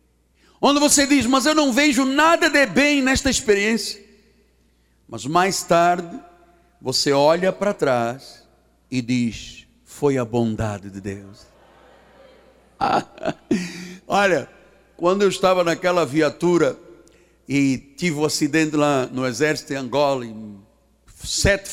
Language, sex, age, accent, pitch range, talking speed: Portuguese, male, 60-79, Brazilian, 130-210 Hz, 125 wpm